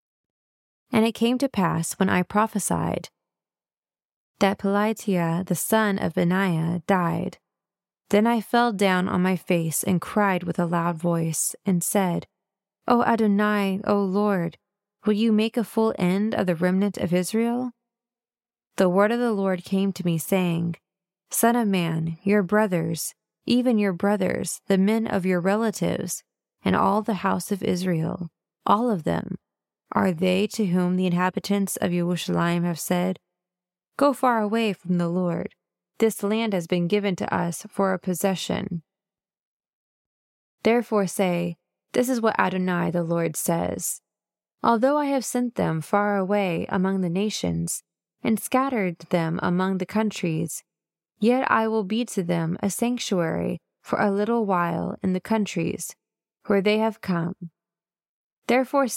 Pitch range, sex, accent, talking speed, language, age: 175-215 Hz, female, American, 150 wpm, English, 20-39